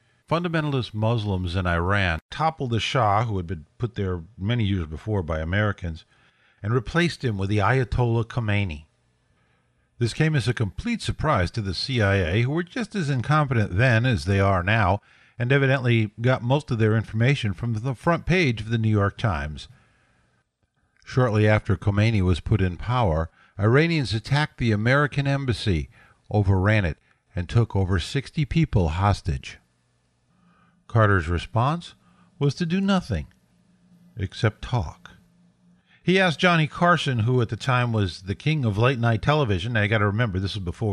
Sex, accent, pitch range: male, American, 95-130 Hz